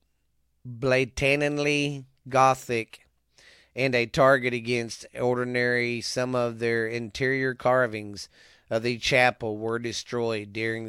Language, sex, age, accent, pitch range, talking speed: English, male, 40-59, American, 105-125 Hz, 100 wpm